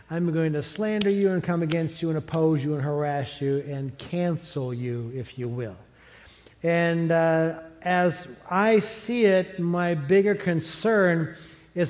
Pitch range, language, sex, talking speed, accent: 155-190 Hz, English, male, 155 wpm, American